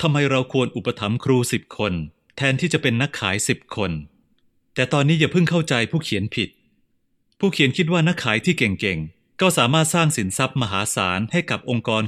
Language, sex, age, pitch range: Thai, male, 30-49, 105-150 Hz